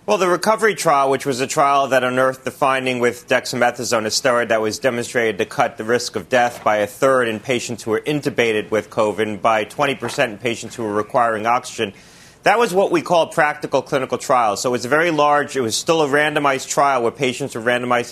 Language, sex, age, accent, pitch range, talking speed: English, male, 30-49, American, 120-150 Hz, 225 wpm